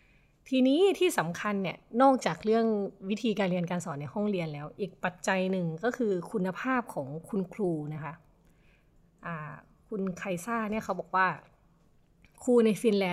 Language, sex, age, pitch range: Thai, female, 20-39, 165-220 Hz